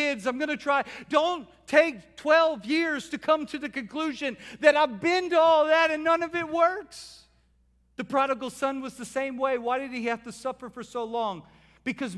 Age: 50-69